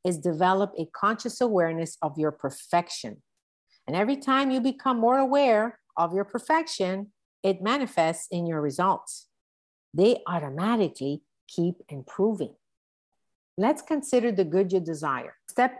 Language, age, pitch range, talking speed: English, 50-69, 155-210 Hz, 130 wpm